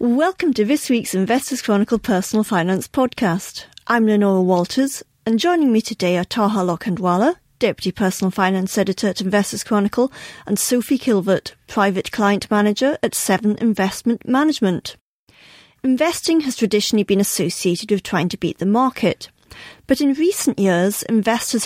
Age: 40-59